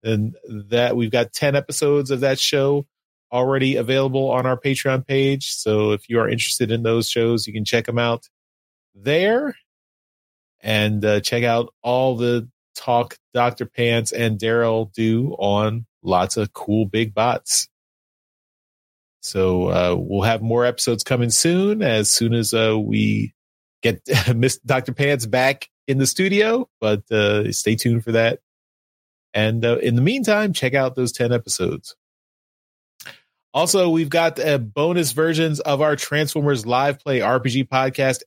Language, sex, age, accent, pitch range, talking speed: English, male, 30-49, American, 110-135 Hz, 150 wpm